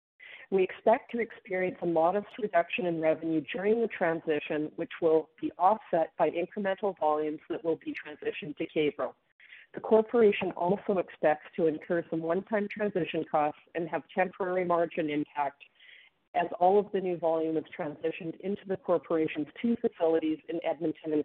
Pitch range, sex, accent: 160-195 Hz, female, American